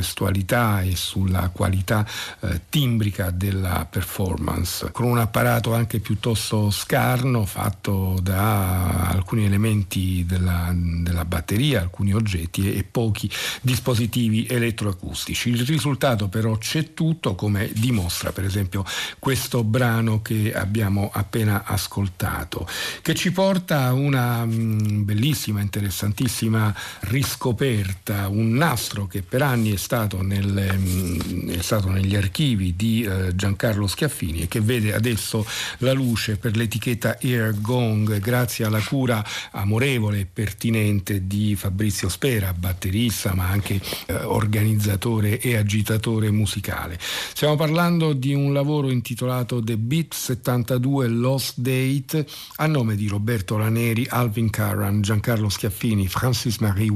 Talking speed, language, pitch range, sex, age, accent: 120 wpm, Italian, 100-120 Hz, male, 50-69, native